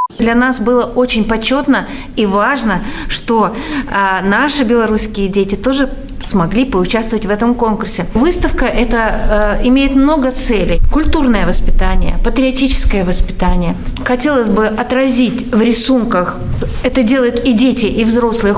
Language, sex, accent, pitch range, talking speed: Russian, female, native, 205-290 Hz, 120 wpm